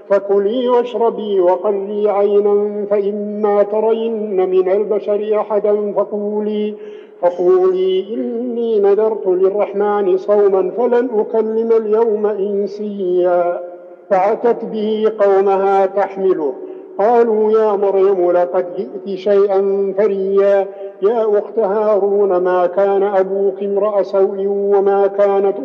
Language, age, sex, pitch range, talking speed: Arabic, 50-69, male, 195-210 Hz, 90 wpm